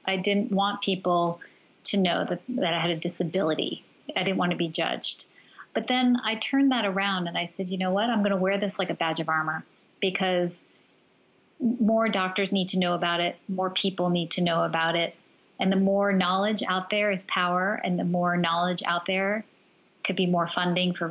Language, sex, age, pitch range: English, female, 30-49, 175-195 Hz